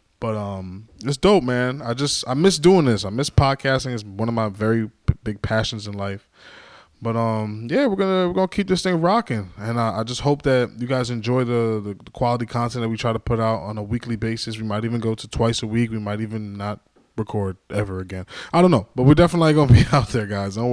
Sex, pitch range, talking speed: male, 110-135 Hz, 245 wpm